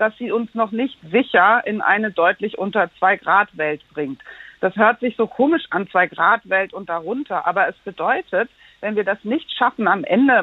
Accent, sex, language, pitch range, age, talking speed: German, female, German, 190-230 Hz, 50-69, 180 wpm